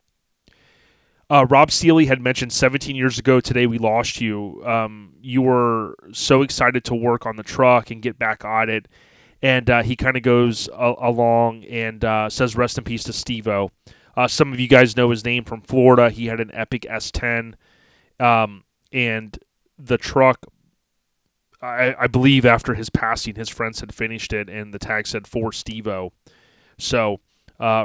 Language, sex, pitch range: English, male, 110-125 Hz